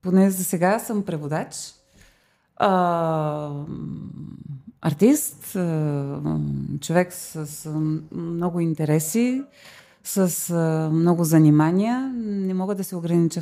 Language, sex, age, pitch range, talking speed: Bulgarian, female, 30-49, 160-195 Hz, 80 wpm